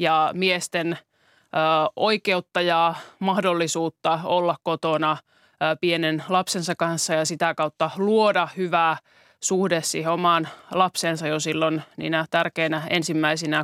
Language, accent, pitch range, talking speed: Finnish, native, 160-195 Hz, 100 wpm